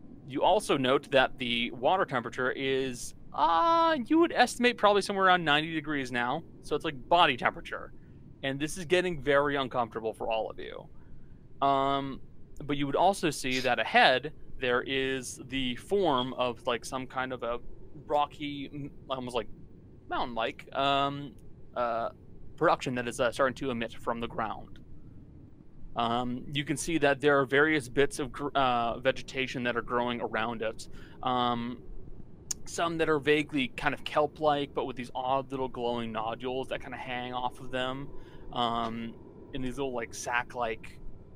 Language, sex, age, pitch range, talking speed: English, male, 20-39, 120-145 Hz, 165 wpm